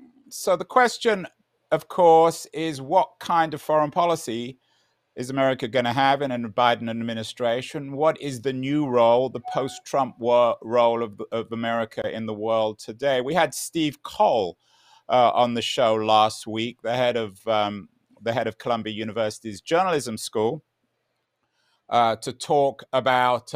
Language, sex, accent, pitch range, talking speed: English, male, British, 115-155 Hz, 155 wpm